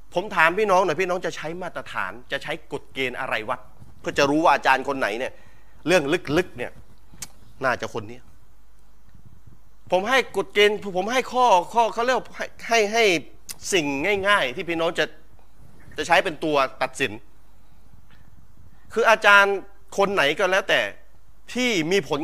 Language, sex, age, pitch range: Thai, male, 30-49, 155-215 Hz